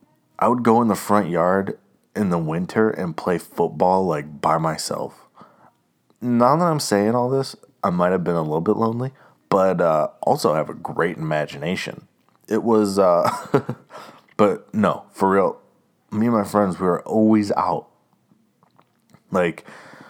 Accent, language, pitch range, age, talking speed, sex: American, English, 85-110 Hz, 30-49, 160 wpm, male